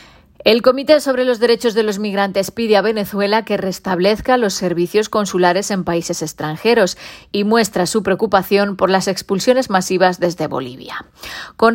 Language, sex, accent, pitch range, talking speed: Spanish, female, Spanish, 180-220 Hz, 155 wpm